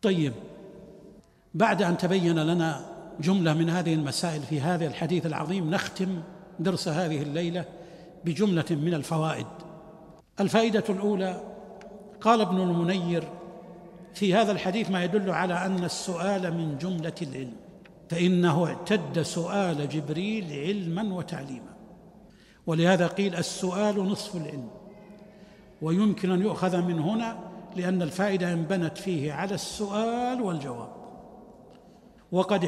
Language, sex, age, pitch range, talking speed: Arabic, male, 60-79, 170-205 Hz, 110 wpm